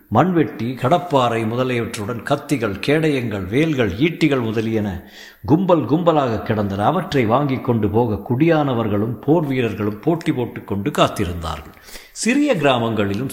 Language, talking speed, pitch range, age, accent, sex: Tamil, 105 wpm, 105-145 Hz, 50-69, native, male